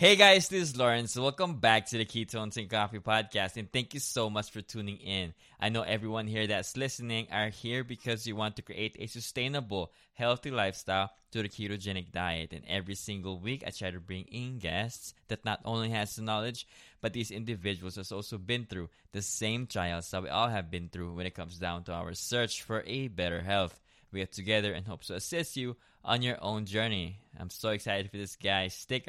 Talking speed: 215 wpm